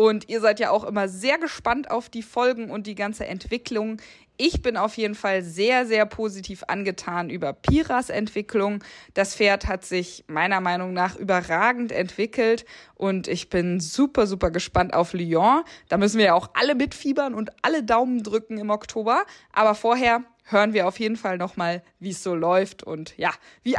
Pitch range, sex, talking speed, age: 200-245 Hz, female, 180 wpm, 20-39